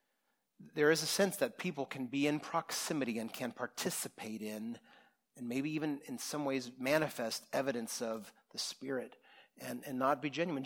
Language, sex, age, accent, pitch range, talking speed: English, male, 40-59, American, 135-195 Hz, 170 wpm